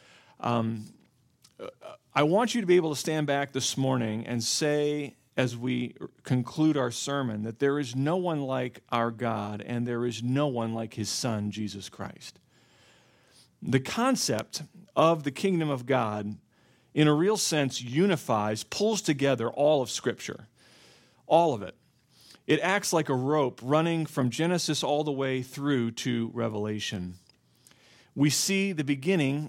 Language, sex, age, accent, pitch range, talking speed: English, male, 40-59, American, 120-150 Hz, 155 wpm